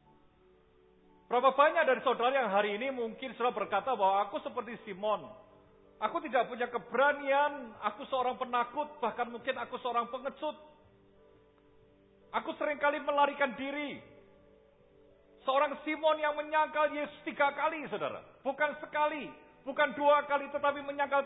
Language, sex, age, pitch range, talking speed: English, male, 50-69, 235-295 Hz, 125 wpm